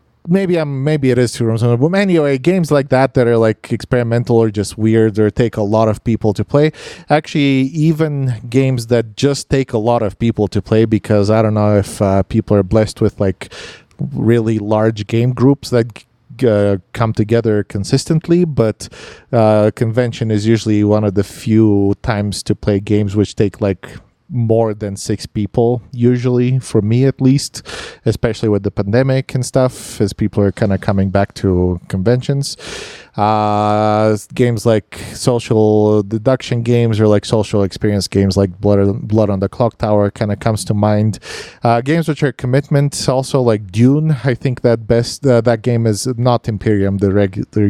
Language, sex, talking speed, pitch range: English, male, 180 wpm, 105-125 Hz